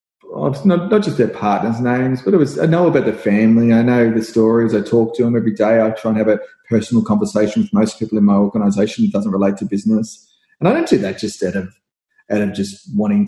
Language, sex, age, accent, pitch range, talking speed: English, male, 30-49, Australian, 105-165 Hz, 240 wpm